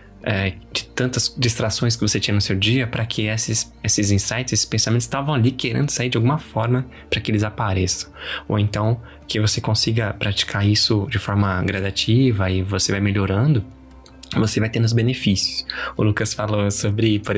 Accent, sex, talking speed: Brazilian, male, 175 wpm